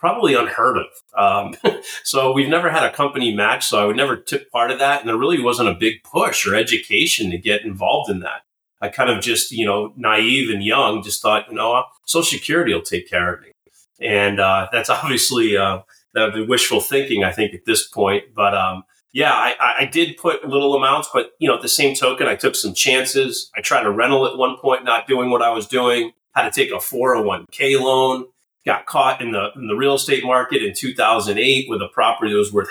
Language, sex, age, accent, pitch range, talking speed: English, male, 30-49, American, 100-135 Hz, 225 wpm